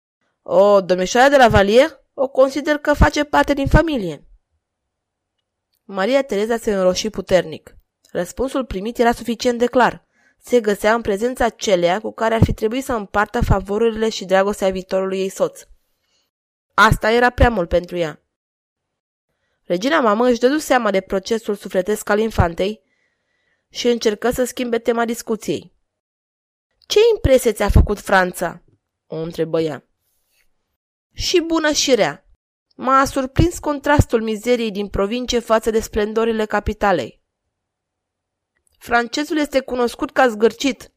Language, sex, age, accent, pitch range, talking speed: Romanian, female, 20-39, native, 180-245 Hz, 130 wpm